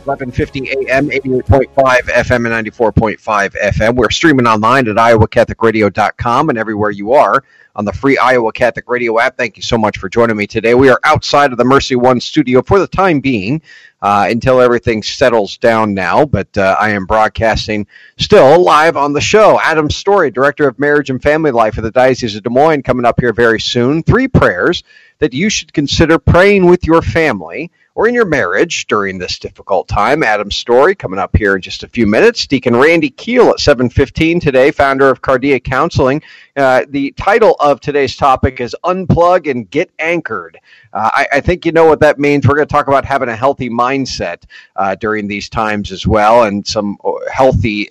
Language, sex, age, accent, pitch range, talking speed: English, male, 40-59, American, 110-145 Hz, 195 wpm